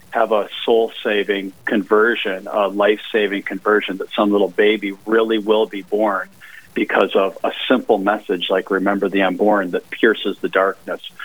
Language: English